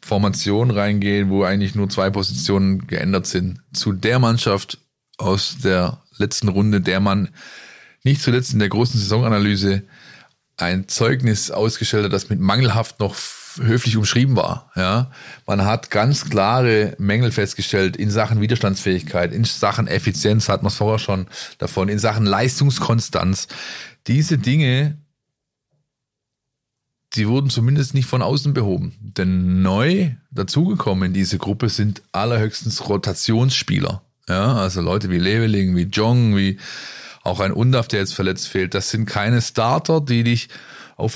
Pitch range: 100-125 Hz